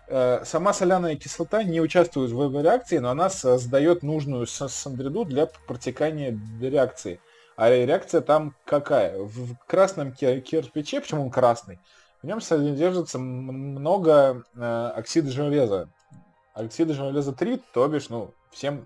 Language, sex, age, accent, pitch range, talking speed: Russian, male, 20-39, native, 125-155 Hz, 120 wpm